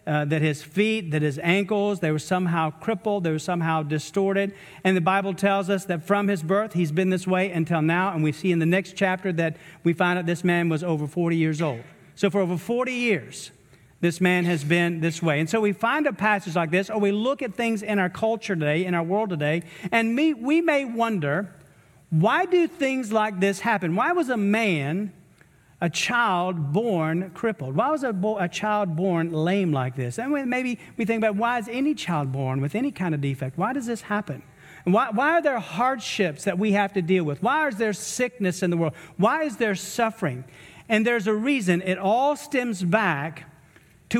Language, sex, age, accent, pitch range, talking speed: English, male, 40-59, American, 165-220 Hz, 215 wpm